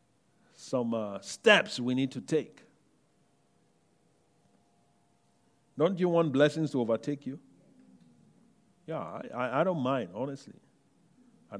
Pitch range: 140-200 Hz